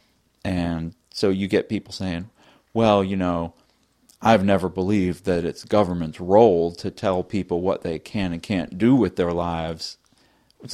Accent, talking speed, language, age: American, 160 wpm, English, 40-59